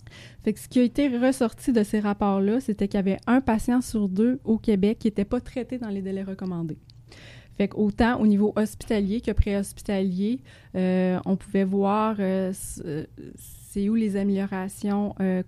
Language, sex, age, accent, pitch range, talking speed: French, female, 20-39, Canadian, 185-215 Hz, 175 wpm